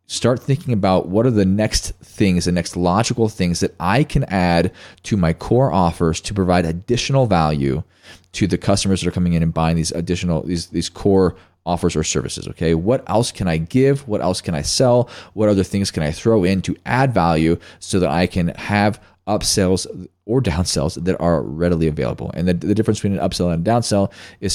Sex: male